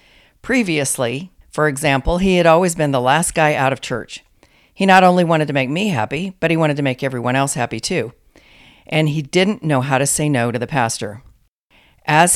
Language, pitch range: English, 130-175 Hz